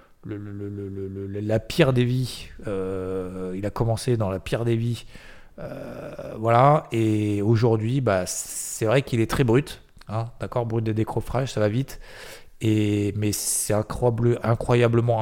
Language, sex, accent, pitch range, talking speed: French, male, French, 100-120 Hz, 165 wpm